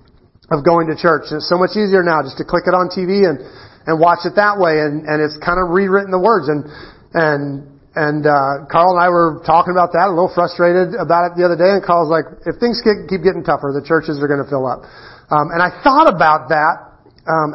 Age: 40-59